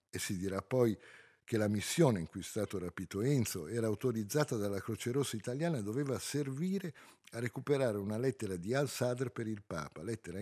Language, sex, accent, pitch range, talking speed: Italian, male, native, 95-125 Hz, 185 wpm